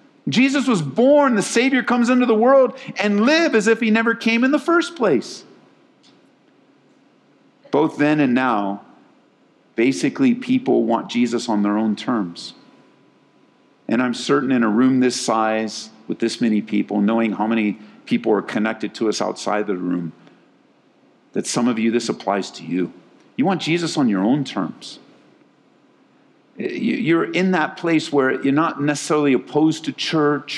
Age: 50-69